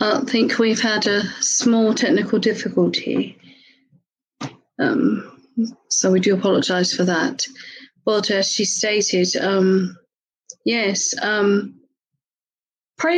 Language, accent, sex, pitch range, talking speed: English, British, female, 200-250 Hz, 105 wpm